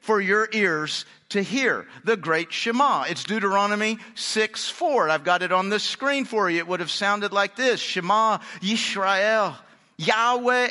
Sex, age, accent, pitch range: male, 50-69, American, 195-245 Hz